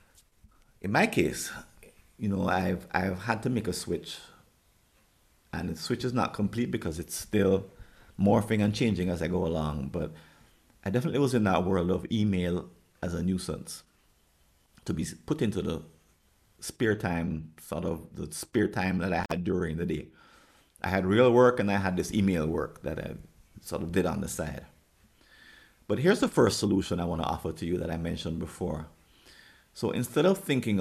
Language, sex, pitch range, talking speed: English, male, 85-105 Hz, 185 wpm